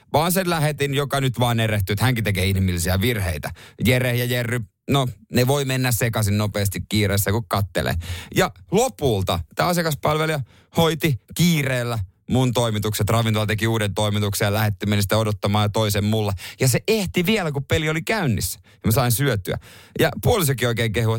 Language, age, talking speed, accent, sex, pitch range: Finnish, 30-49, 165 wpm, native, male, 100-140 Hz